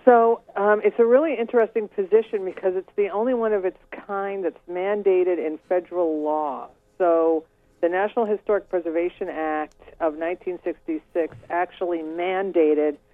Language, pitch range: English, 150-180 Hz